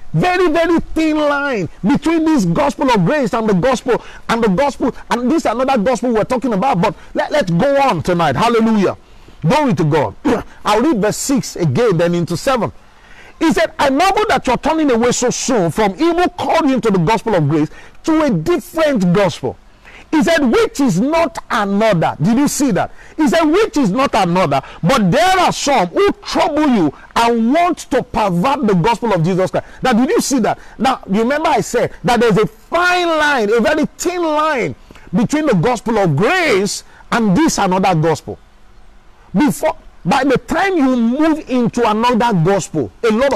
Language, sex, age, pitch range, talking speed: English, male, 50-69, 185-285 Hz, 185 wpm